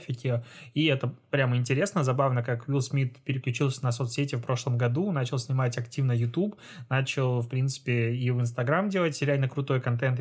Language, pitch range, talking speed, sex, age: Russian, 125-150 Hz, 165 wpm, male, 20-39